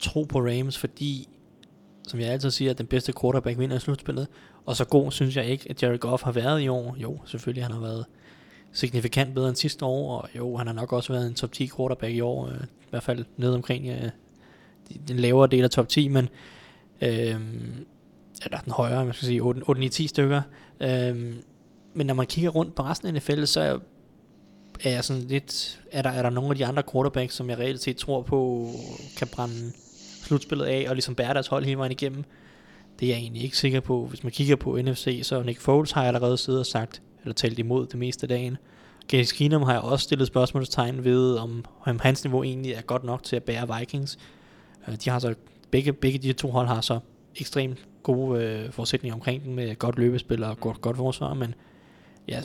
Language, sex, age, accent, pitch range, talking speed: Danish, male, 20-39, native, 120-135 Hz, 220 wpm